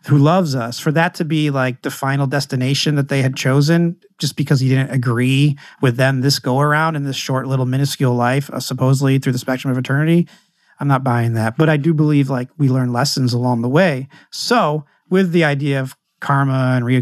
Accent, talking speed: American, 210 wpm